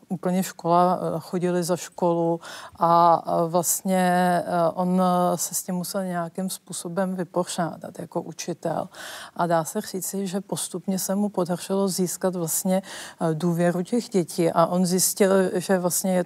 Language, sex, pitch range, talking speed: Czech, female, 165-190 Hz, 135 wpm